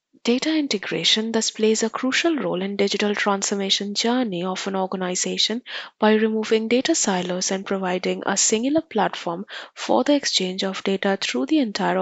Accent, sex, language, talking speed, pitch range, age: Indian, female, English, 155 wpm, 190-225 Hz, 20-39